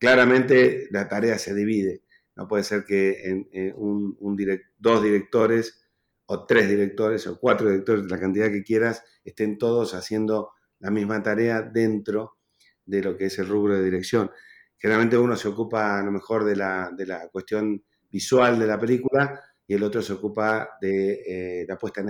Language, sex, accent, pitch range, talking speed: Spanish, male, Argentinian, 100-110 Hz, 165 wpm